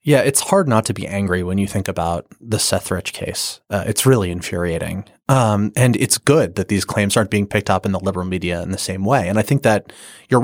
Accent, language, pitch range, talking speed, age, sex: American, English, 95-125 Hz, 245 wpm, 30-49, male